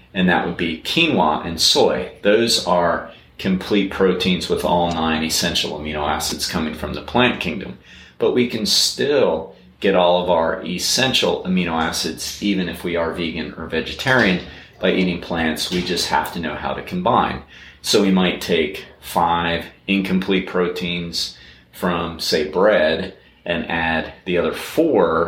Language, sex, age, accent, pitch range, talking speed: English, male, 30-49, American, 75-90 Hz, 155 wpm